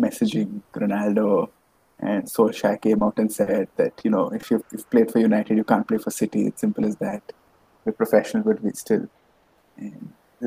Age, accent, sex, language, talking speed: 20-39, Indian, male, English, 180 wpm